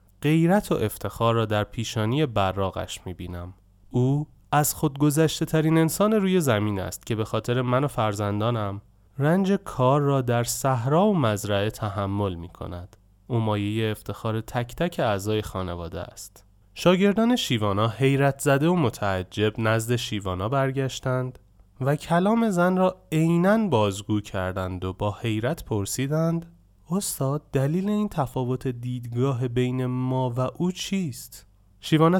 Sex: male